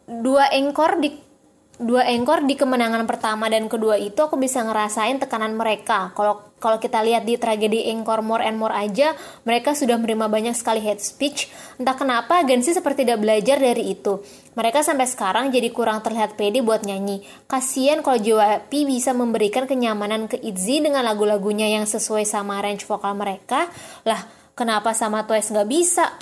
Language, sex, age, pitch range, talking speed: Indonesian, female, 20-39, 215-270 Hz, 165 wpm